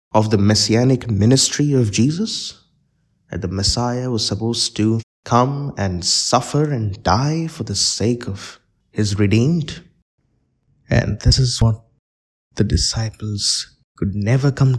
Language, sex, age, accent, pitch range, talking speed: English, male, 20-39, Indian, 100-120 Hz, 130 wpm